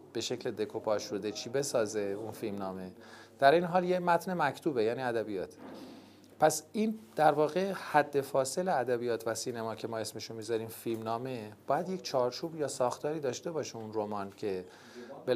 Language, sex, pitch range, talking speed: Persian, male, 110-155 Hz, 170 wpm